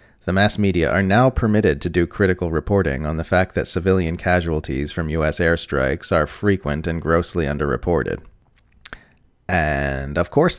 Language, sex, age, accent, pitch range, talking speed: English, male, 30-49, American, 80-105 Hz, 155 wpm